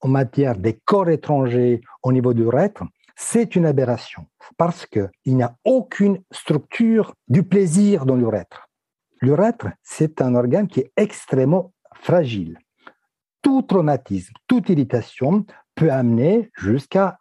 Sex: male